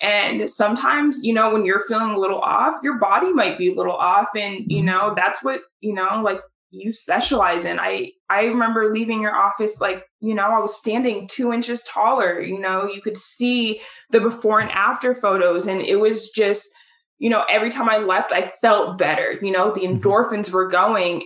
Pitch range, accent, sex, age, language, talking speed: 185-230 Hz, American, female, 20-39, English, 205 wpm